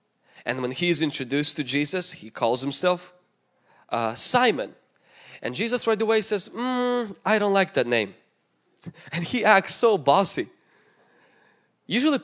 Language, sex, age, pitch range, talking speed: English, male, 20-39, 145-220 Hz, 135 wpm